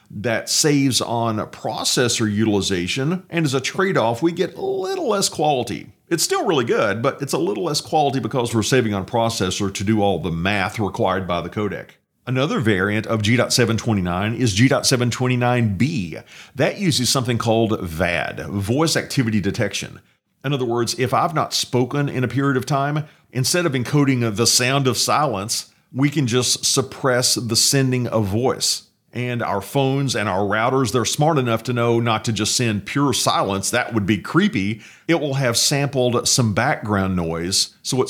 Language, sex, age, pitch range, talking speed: English, male, 40-59, 110-140 Hz, 175 wpm